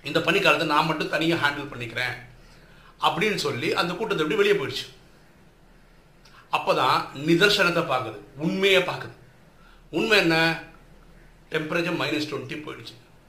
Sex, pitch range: male, 125-165 Hz